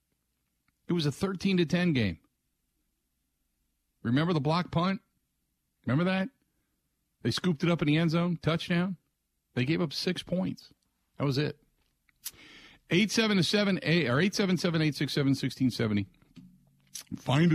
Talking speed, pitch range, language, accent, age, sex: 155 wpm, 110-170 Hz, English, American, 50-69, male